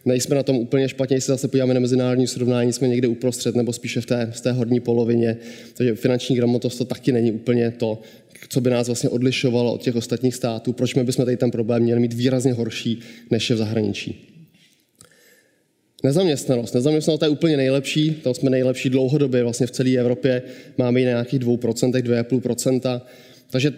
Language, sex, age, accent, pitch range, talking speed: Czech, male, 20-39, native, 120-135 Hz, 185 wpm